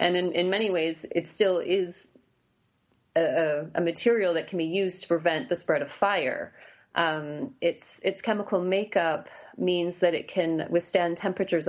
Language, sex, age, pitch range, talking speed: English, female, 30-49, 155-180 Hz, 165 wpm